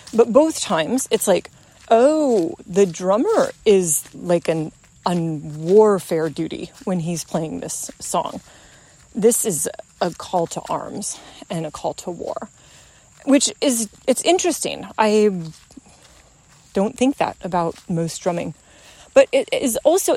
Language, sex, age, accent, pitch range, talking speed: English, female, 30-49, American, 185-245 Hz, 135 wpm